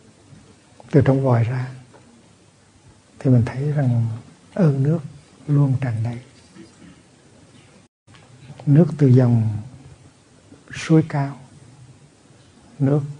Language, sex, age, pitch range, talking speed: Vietnamese, male, 60-79, 120-140 Hz, 85 wpm